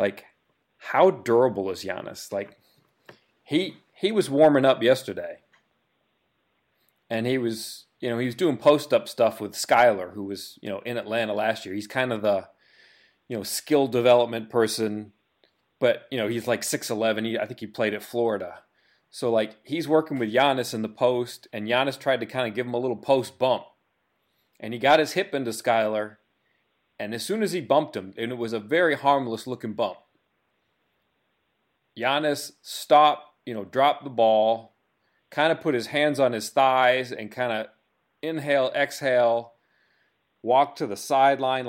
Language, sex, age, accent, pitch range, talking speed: English, male, 30-49, American, 110-140 Hz, 175 wpm